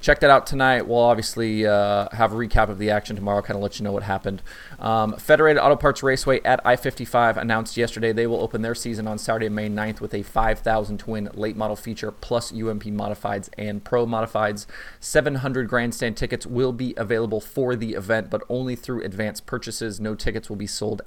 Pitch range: 105-120 Hz